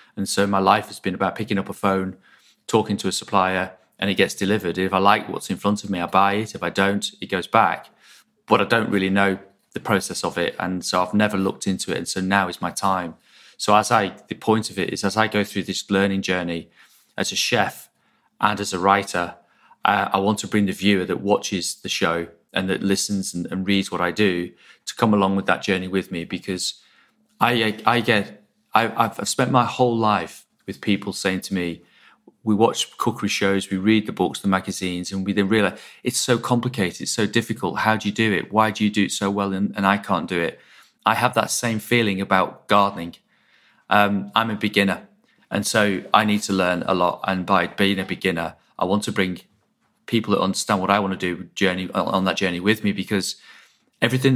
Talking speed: 225 wpm